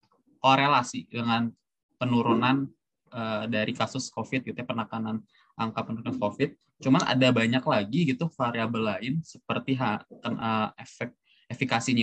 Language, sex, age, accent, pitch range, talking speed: Indonesian, male, 20-39, native, 115-135 Hz, 125 wpm